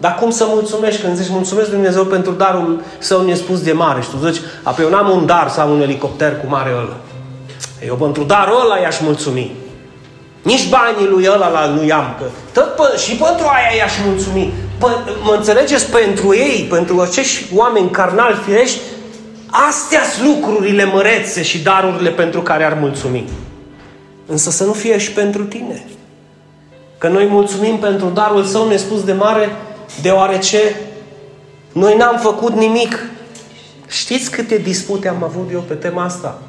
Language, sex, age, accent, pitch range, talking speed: Romanian, male, 30-49, native, 160-225 Hz, 155 wpm